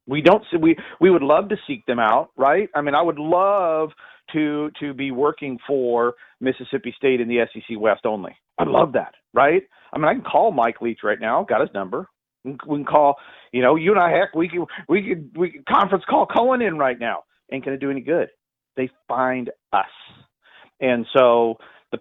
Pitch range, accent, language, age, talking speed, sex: 125-160 Hz, American, English, 40-59, 220 wpm, male